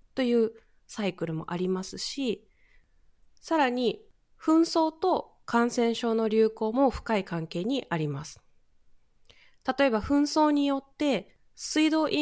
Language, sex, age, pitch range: Japanese, female, 20-39, 195-270 Hz